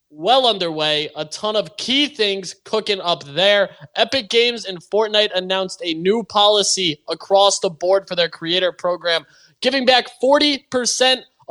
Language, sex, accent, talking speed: English, male, American, 145 wpm